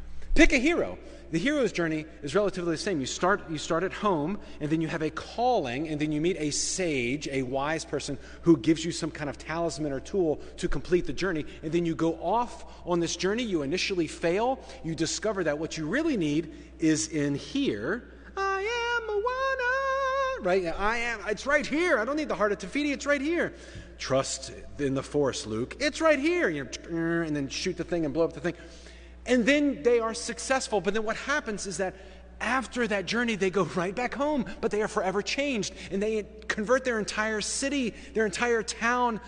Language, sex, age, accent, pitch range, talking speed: English, male, 30-49, American, 160-235 Hz, 210 wpm